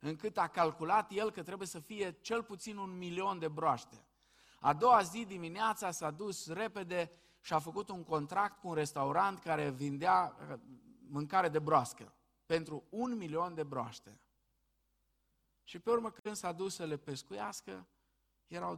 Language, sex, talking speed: Romanian, male, 155 wpm